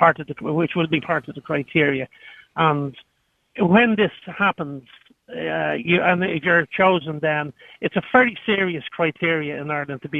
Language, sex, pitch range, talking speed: English, male, 145-175 Hz, 175 wpm